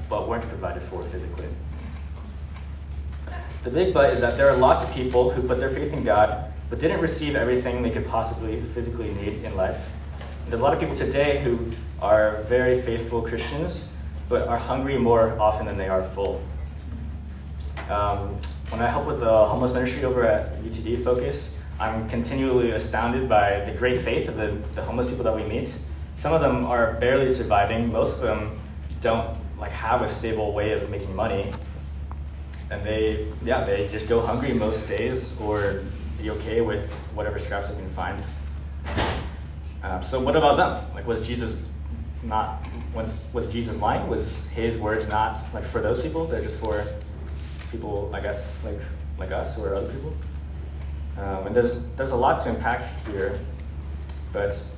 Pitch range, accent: 75-110 Hz, American